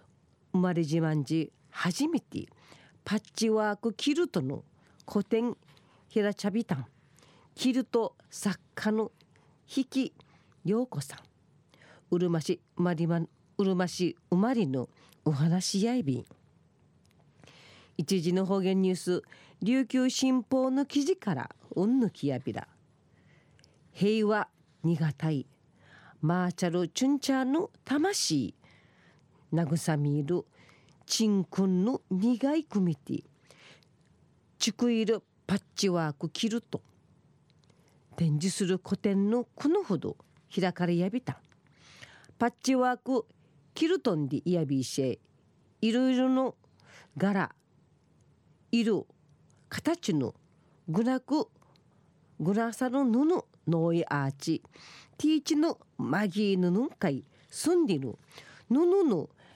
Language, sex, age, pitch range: Japanese, female, 40-59, 160-240 Hz